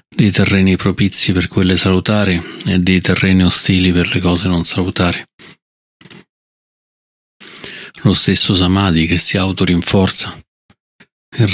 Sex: male